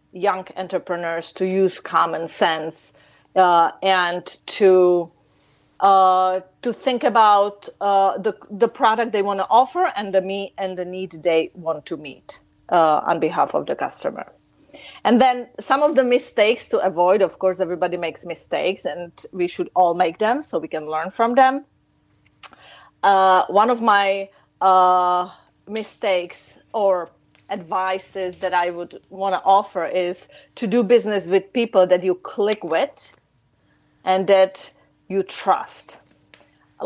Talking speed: 150 wpm